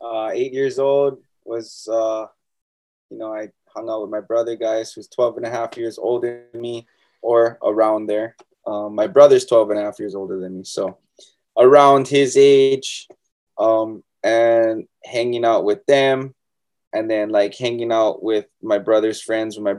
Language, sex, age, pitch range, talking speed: English, male, 20-39, 110-130 Hz, 180 wpm